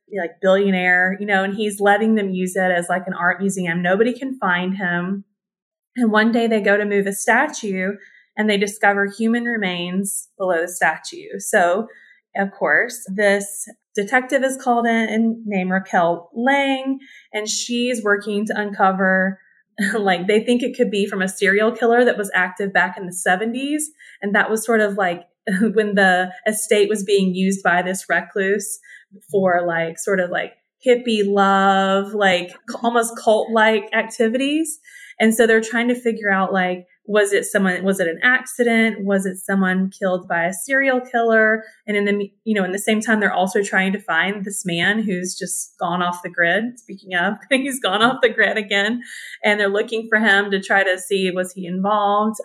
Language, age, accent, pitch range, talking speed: English, 20-39, American, 190-225 Hz, 185 wpm